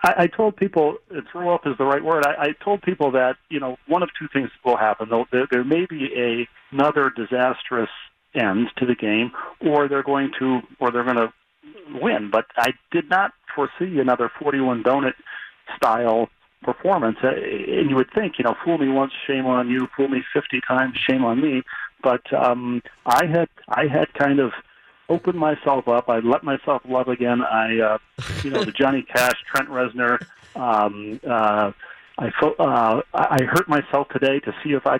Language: English